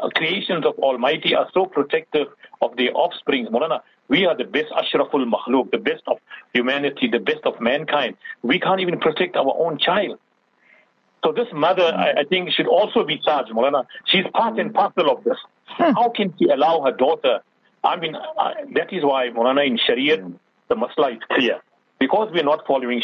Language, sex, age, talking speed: English, male, 60-79, 180 wpm